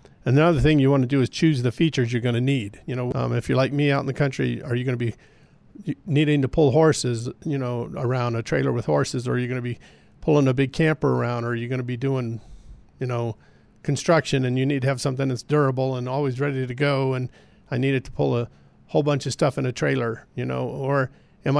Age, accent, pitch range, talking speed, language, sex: 50-69, American, 125-145 Hz, 260 wpm, English, male